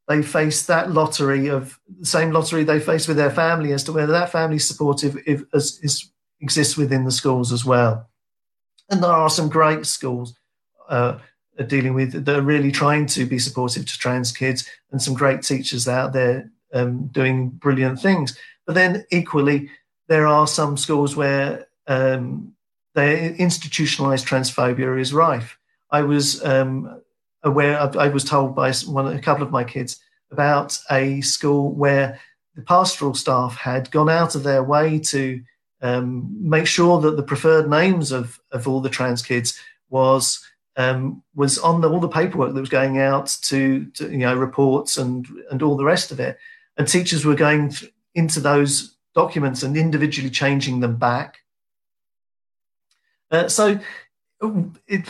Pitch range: 130-155 Hz